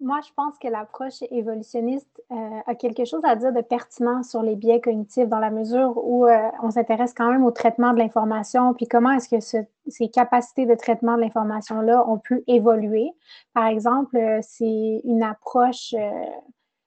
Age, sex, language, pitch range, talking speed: 30-49, female, French, 220-250 Hz, 180 wpm